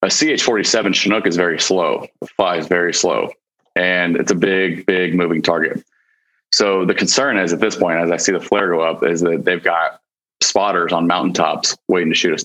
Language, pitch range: English, 85-95 Hz